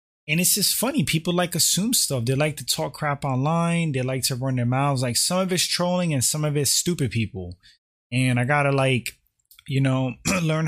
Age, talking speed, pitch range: 20-39, 220 wpm, 130-175 Hz